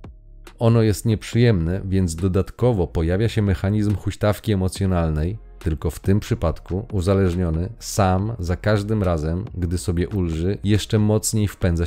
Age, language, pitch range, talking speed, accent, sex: 30-49, Polish, 85-100 Hz, 125 wpm, native, male